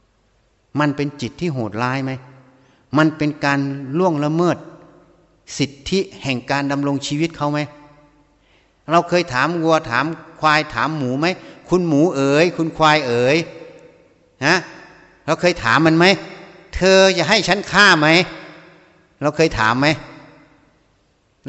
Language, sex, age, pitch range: Thai, male, 60-79, 115-155 Hz